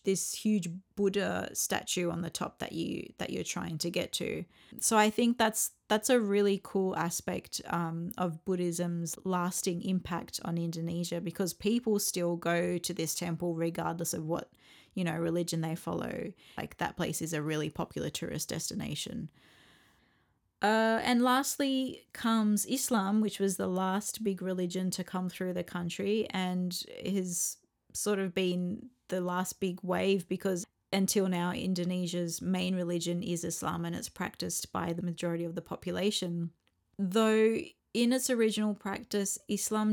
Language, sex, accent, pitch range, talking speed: English, female, Australian, 175-205 Hz, 155 wpm